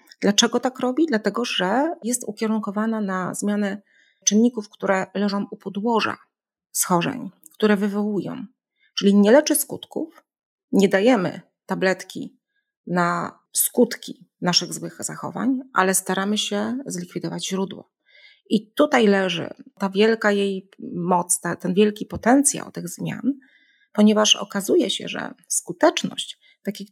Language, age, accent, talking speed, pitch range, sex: Polish, 30-49, native, 115 wpm, 190-245 Hz, female